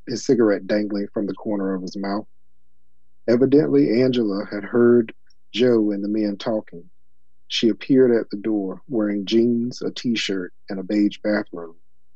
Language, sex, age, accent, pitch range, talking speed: English, male, 40-59, American, 70-120 Hz, 155 wpm